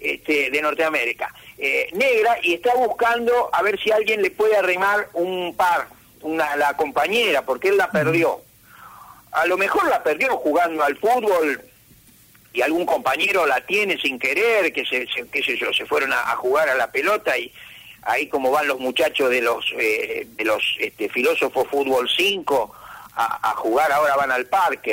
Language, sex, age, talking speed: Spanish, male, 50-69, 180 wpm